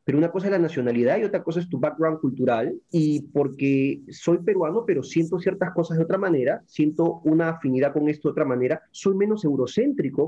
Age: 30-49